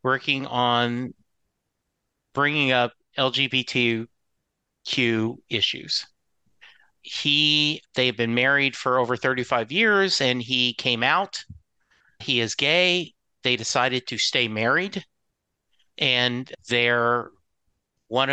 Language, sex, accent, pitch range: English, male, American, 120-150 Hz